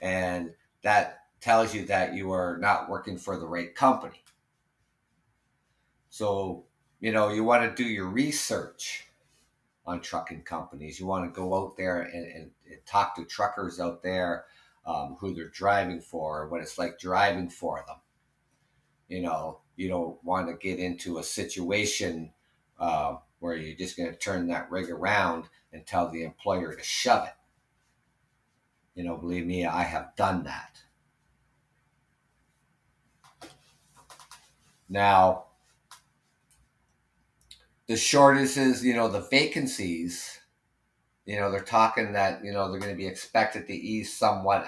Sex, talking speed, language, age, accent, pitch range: male, 145 wpm, English, 50-69, American, 85-110 Hz